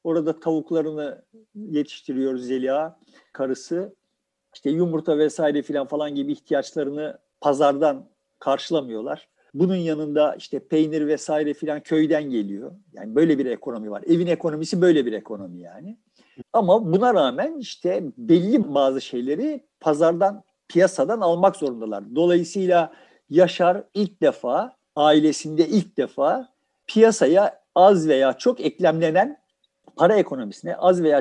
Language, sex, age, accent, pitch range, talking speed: Turkish, male, 50-69, native, 145-200 Hz, 115 wpm